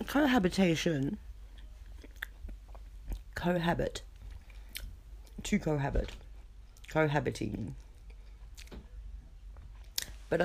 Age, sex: 30-49, female